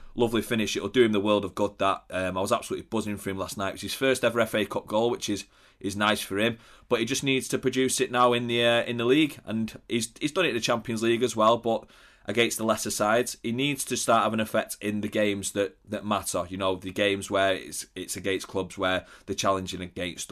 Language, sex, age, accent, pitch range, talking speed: English, male, 30-49, British, 95-115 Hz, 265 wpm